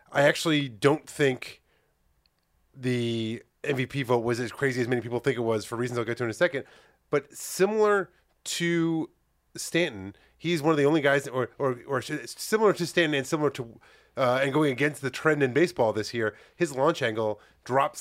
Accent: American